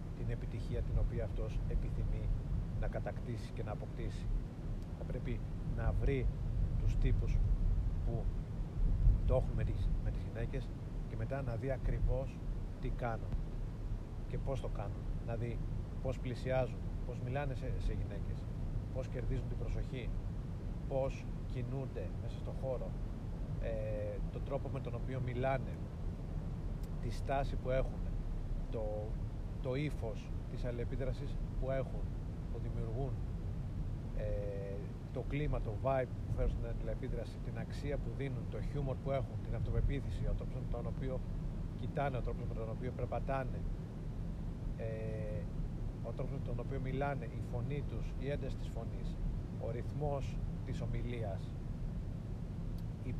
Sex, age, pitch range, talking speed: male, 40-59, 105-130 Hz, 135 wpm